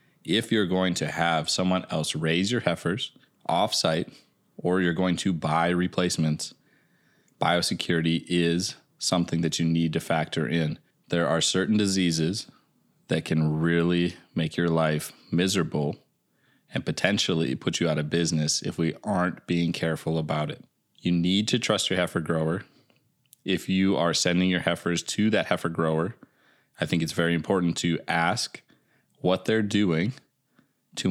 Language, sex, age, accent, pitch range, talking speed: English, male, 20-39, American, 80-95 Hz, 150 wpm